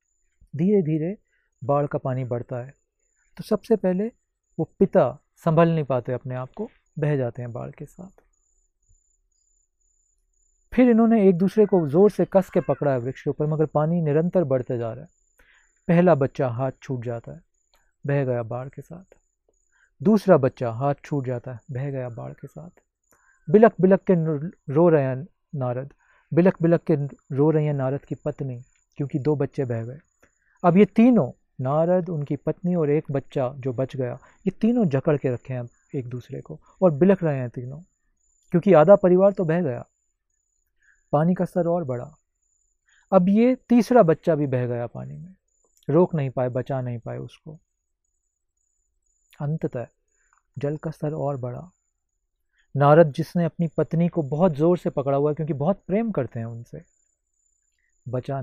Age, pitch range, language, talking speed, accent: 40-59, 125-170 Hz, Hindi, 170 wpm, native